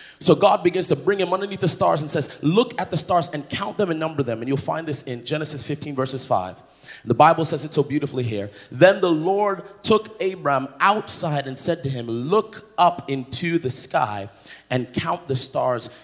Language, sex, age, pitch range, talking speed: English, male, 30-49, 130-180 Hz, 210 wpm